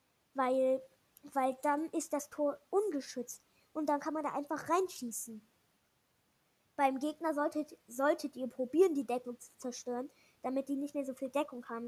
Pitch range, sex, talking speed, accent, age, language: 255-300 Hz, female, 160 wpm, German, 10-29, German